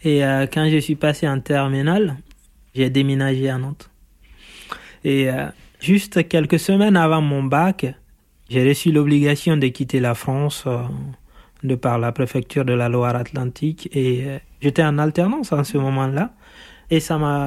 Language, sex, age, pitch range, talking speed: French, male, 30-49, 130-160 Hz, 145 wpm